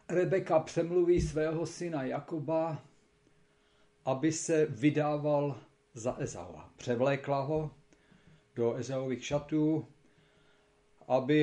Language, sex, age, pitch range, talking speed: Slovak, male, 50-69, 130-155 Hz, 85 wpm